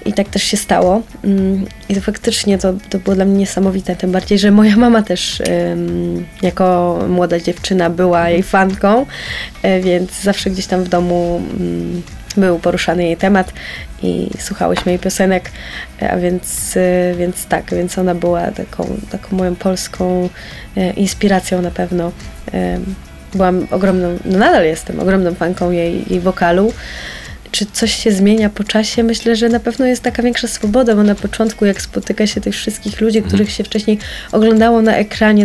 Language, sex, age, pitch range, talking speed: Polish, female, 20-39, 180-215 Hz, 155 wpm